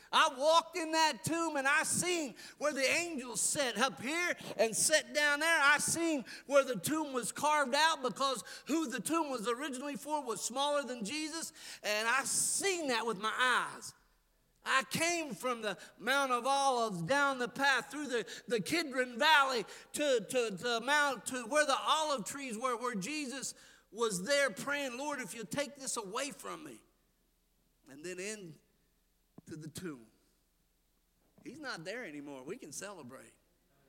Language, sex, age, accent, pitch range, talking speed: English, male, 50-69, American, 220-300 Hz, 165 wpm